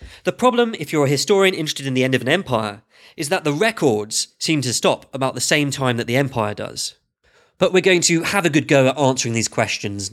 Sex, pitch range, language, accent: male, 115-170 Hz, English, British